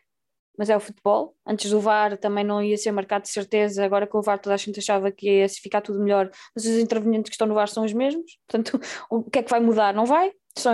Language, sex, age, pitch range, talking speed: Portuguese, female, 20-39, 210-275 Hz, 265 wpm